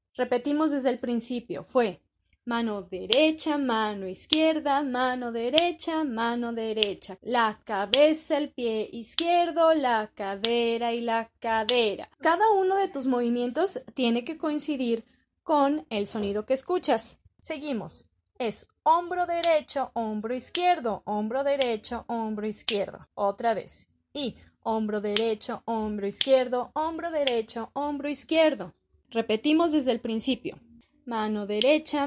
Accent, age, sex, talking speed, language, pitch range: Colombian, 20-39, female, 120 wpm, Spanish, 225-295 Hz